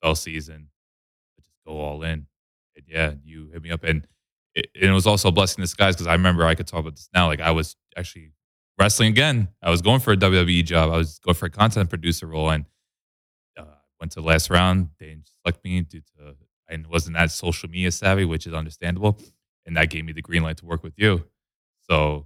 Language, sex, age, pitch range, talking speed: English, male, 20-39, 80-95 Hz, 235 wpm